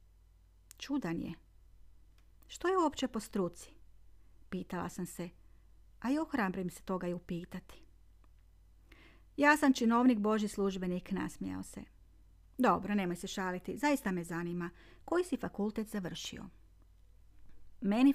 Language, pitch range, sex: Croatian, 155-240 Hz, female